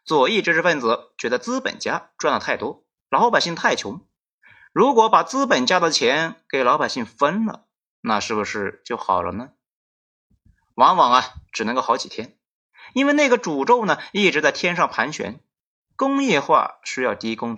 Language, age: Chinese, 30-49